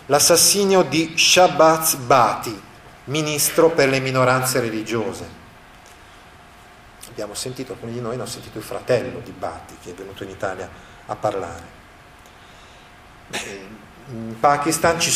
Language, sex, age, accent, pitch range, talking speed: Italian, male, 40-59, native, 115-145 Hz, 125 wpm